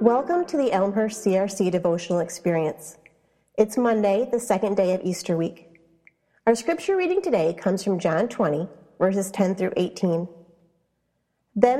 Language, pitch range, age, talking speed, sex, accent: English, 180-235 Hz, 30-49, 140 wpm, female, American